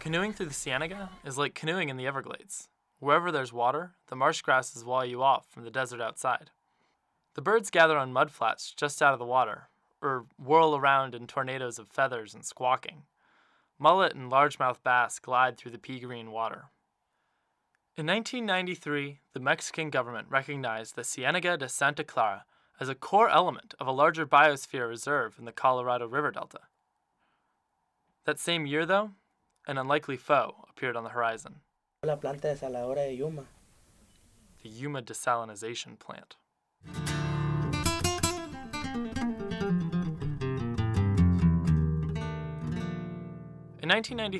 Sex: male